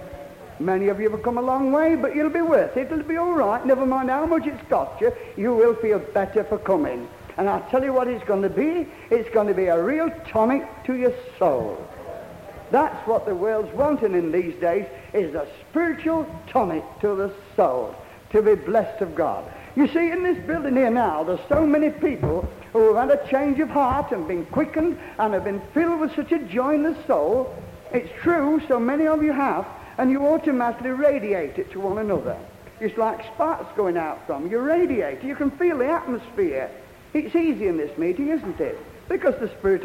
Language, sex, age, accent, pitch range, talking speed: English, male, 60-79, British, 230-335 Hz, 210 wpm